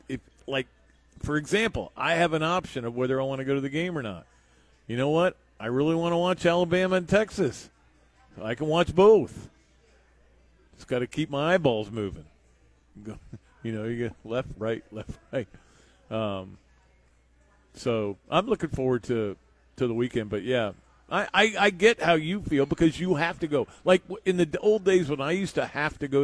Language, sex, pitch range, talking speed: English, male, 100-145 Hz, 190 wpm